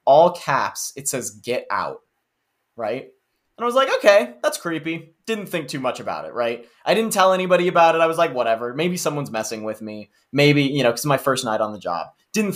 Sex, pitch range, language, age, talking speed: male, 120-175 Hz, English, 20-39, 230 wpm